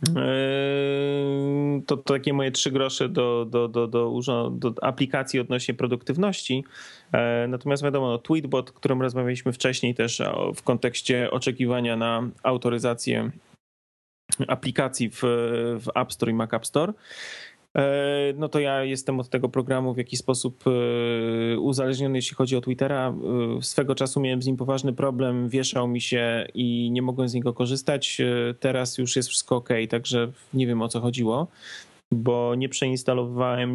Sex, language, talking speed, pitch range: male, Polish, 140 wpm, 120-135 Hz